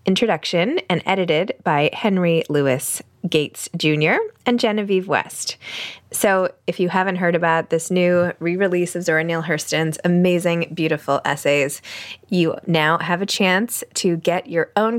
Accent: American